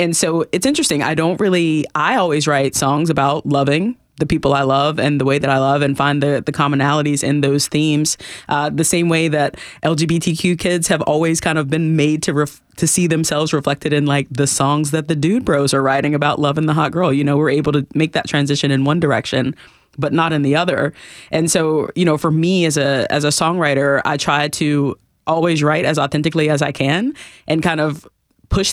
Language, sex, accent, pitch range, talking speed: English, female, American, 140-160 Hz, 225 wpm